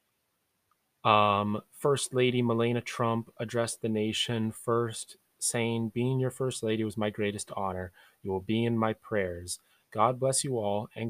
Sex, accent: male, American